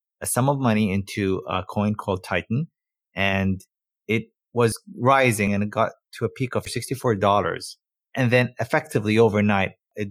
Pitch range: 100-120 Hz